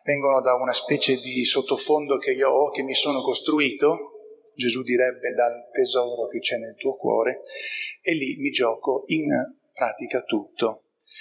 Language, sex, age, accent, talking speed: Italian, male, 40-59, native, 155 wpm